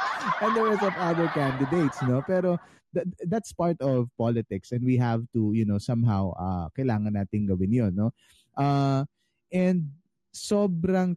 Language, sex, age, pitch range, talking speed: Filipino, male, 20-39, 120-180 Hz, 155 wpm